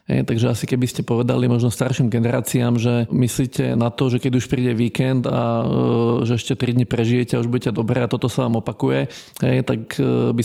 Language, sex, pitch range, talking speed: Slovak, male, 115-130 Hz, 220 wpm